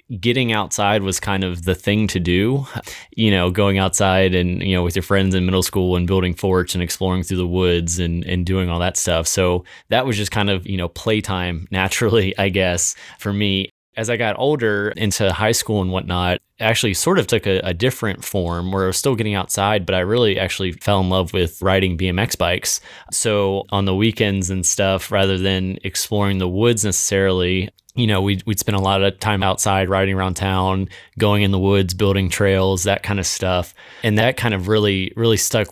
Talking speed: 210 wpm